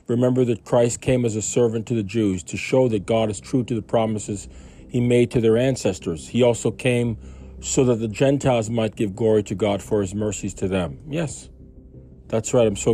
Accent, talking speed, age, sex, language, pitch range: American, 215 wpm, 40-59, male, English, 95-115 Hz